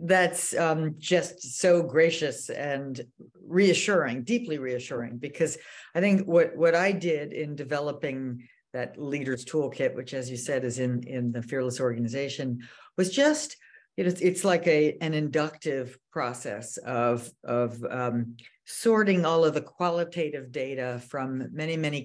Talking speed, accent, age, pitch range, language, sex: 140 wpm, American, 50-69, 125-160 Hz, English, female